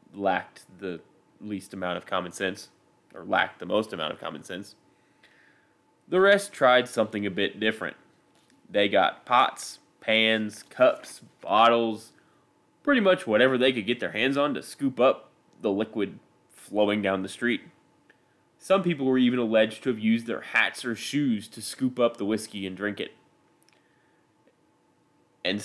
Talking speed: 155 wpm